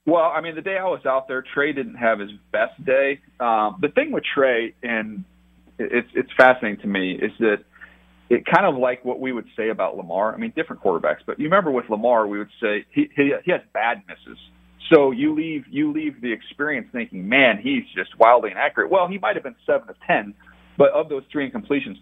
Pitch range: 100-145 Hz